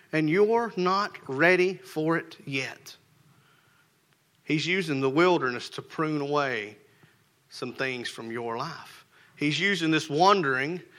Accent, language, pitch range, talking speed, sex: American, English, 130-160 Hz, 125 wpm, male